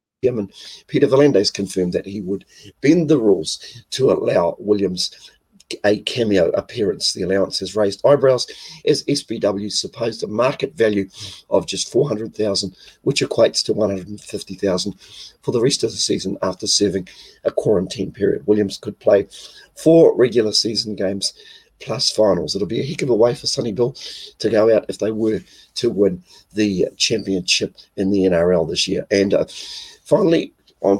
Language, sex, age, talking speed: English, male, 50-69, 160 wpm